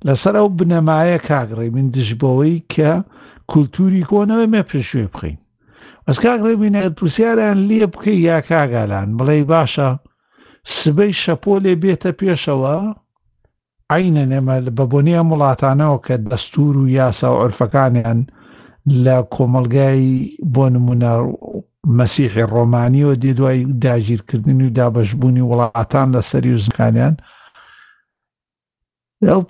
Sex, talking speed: male, 65 wpm